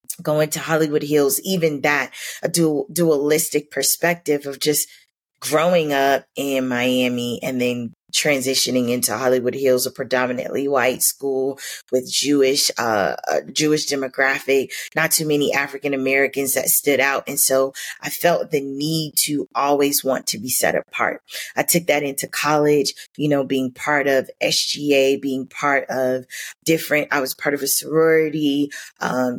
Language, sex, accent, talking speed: English, female, American, 150 wpm